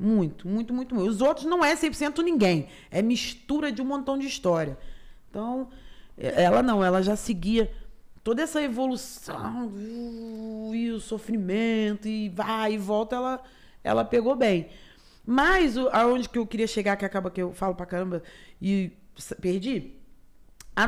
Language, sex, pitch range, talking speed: Portuguese, female, 210-315 Hz, 155 wpm